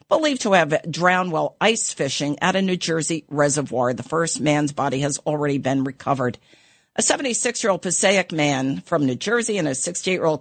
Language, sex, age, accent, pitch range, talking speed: English, female, 50-69, American, 140-170 Hz, 175 wpm